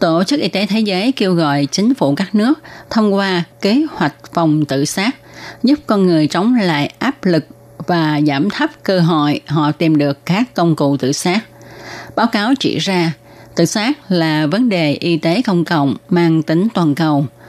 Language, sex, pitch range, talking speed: Vietnamese, female, 155-215 Hz, 190 wpm